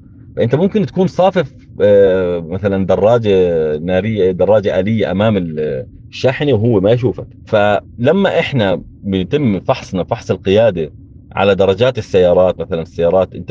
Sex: male